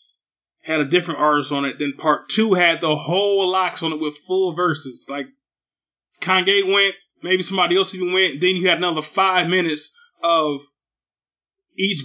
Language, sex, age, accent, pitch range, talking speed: English, male, 20-39, American, 155-225 Hz, 170 wpm